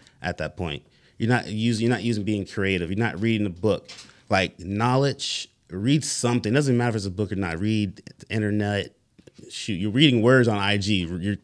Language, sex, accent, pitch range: English, male, American, 90-115 Hz